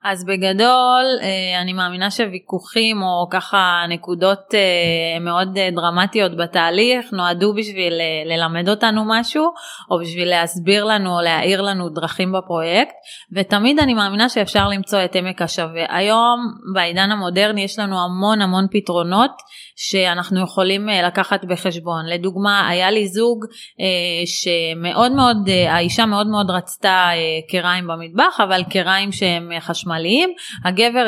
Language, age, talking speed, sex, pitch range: Hebrew, 20-39, 120 wpm, female, 180-225 Hz